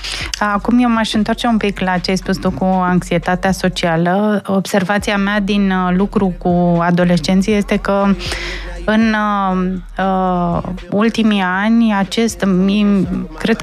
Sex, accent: female, native